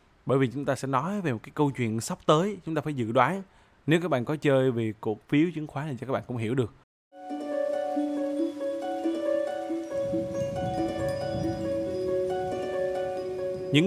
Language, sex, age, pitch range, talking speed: Vietnamese, male, 20-39, 125-175 Hz, 155 wpm